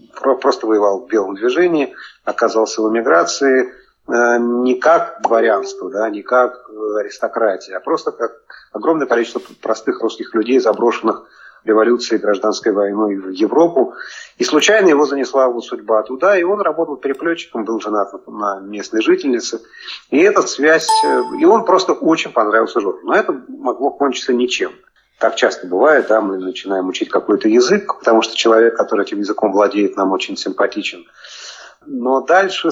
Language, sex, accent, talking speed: Russian, male, native, 150 wpm